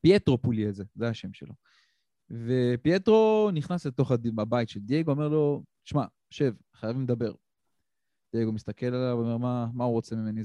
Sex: male